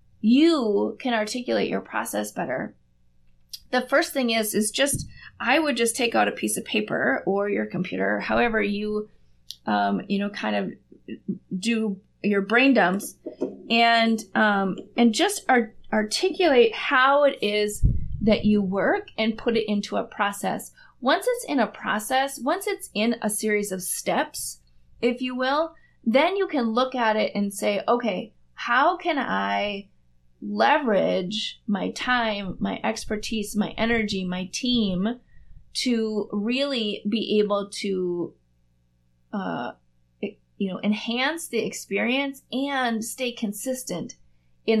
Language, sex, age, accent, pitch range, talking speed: English, female, 30-49, American, 190-245 Hz, 135 wpm